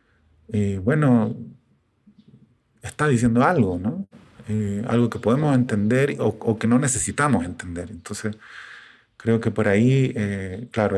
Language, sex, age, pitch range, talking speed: Spanish, male, 30-49, 105-130 Hz, 130 wpm